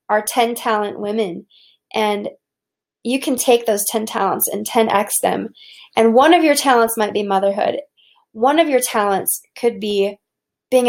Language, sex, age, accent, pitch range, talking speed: English, female, 20-39, American, 210-255 Hz, 160 wpm